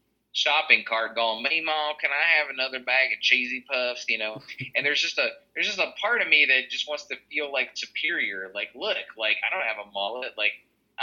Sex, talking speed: male, 230 wpm